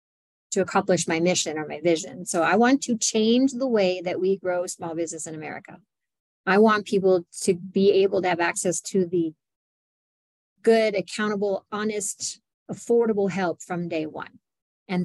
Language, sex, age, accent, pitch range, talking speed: English, female, 30-49, American, 175-215 Hz, 165 wpm